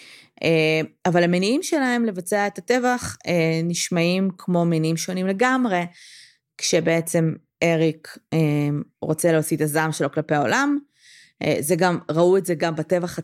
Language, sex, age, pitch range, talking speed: Hebrew, female, 20-39, 160-200 Hz, 120 wpm